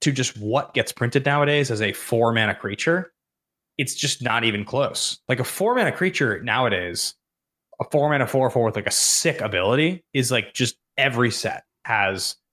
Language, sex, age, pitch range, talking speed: English, male, 20-39, 110-140 Hz, 180 wpm